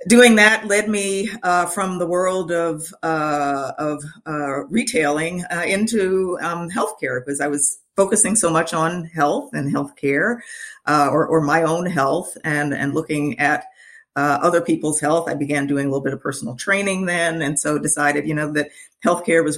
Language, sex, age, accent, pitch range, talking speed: English, female, 40-59, American, 140-170 Hz, 180 wpm